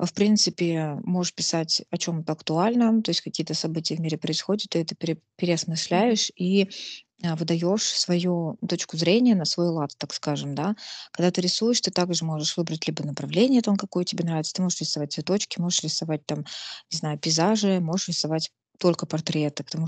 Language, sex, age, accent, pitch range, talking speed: Russian, female, 20-39, native, 160-185 Hz, 170 wpm